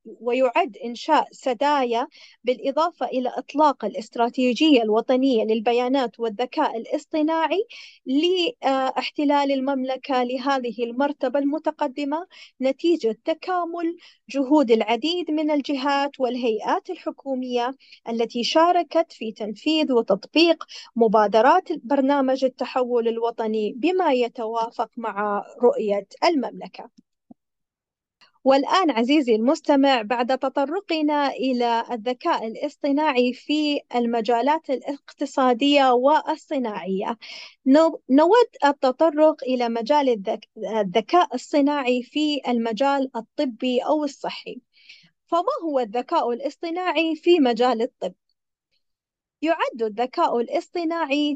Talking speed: 85 wpm